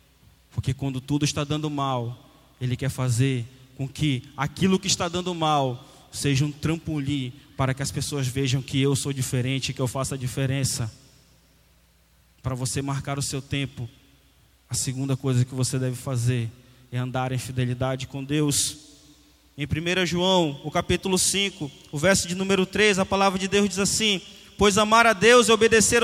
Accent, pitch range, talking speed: Brazilian, 130-150 Hz, 175 wpm